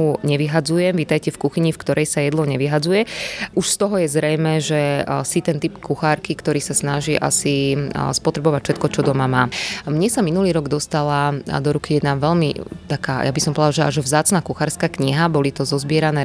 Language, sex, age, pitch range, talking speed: Slovak, female, 20-39, 145-170 Hz, 185 wpm